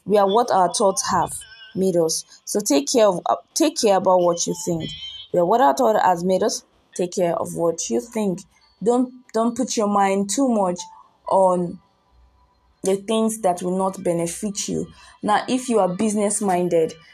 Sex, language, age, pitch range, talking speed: female, English, 20-39, 180-215 Hz, 185 wpm